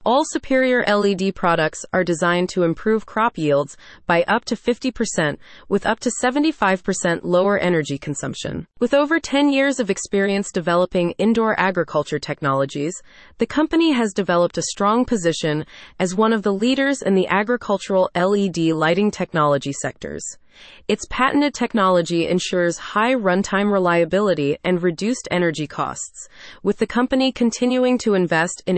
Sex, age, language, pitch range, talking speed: female, 30-49, English, 175-235 Hz, 145 wpm